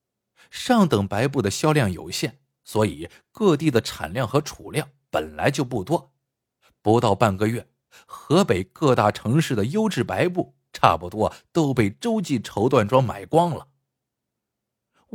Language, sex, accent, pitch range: Chinese, male, native, 105-170 Hz